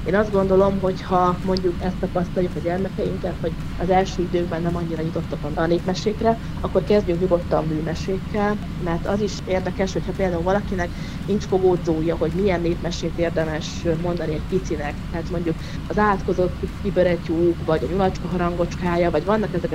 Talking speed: 155 wpm